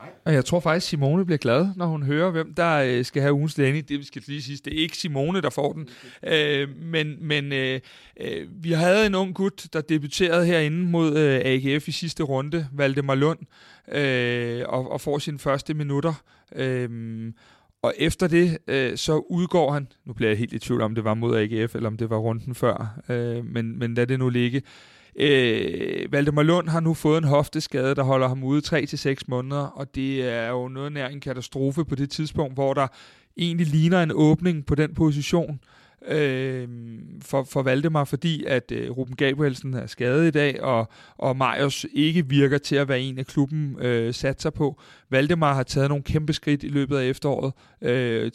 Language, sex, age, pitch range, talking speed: Danish, male, 30-49, 130-155 Hz, 190 wpm